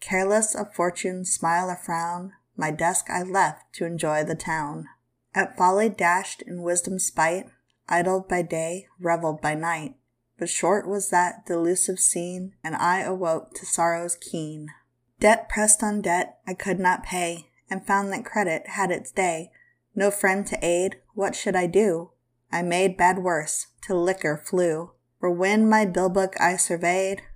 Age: 20-39